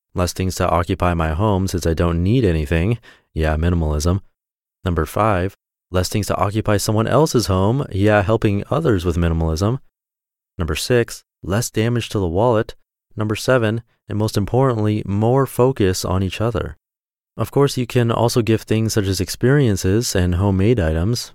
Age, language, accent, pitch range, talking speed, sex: 30-49, English, American, 85-115 Hz, 160 wpm, male